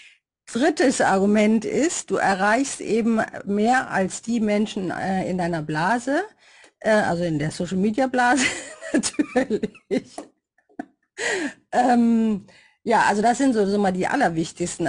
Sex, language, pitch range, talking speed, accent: female, German, 180-240 Hz, 115 wpm, German